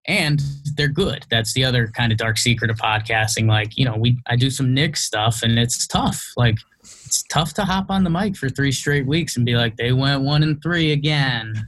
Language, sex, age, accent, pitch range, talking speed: English, male, 20-39, American, 115-145 Hz, 230 wpm